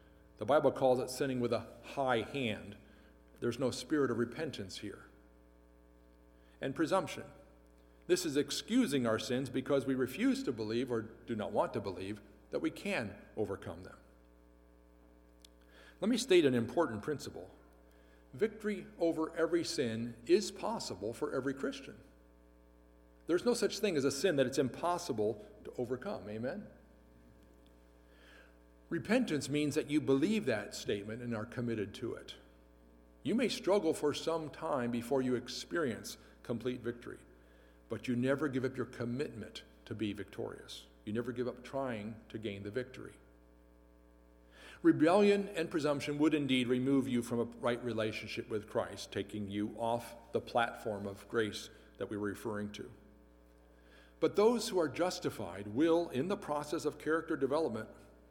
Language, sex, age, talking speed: English, male, 50-69, 150 wpm